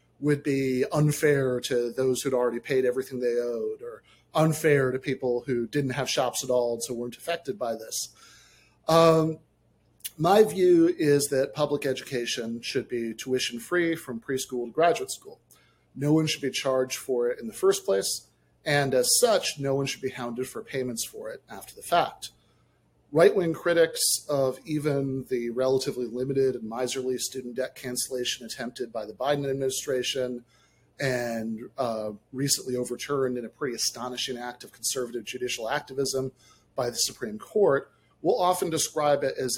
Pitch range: 120-150 Hz